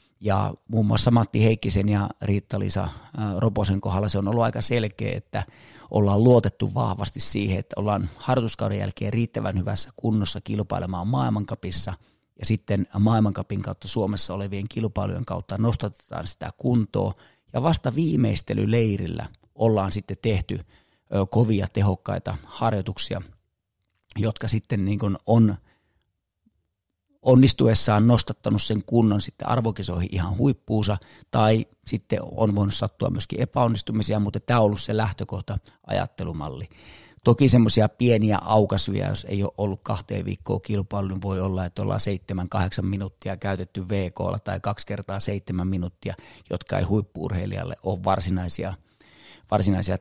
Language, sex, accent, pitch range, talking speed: Finnish, male, native, 95-115 Hz, 125 wpm